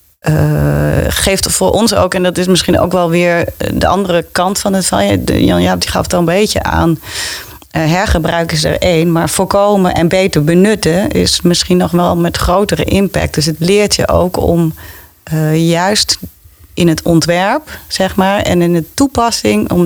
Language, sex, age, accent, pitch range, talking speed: Dutch, female, 40-59, Dutch, 140-180 Hz, 180 wpm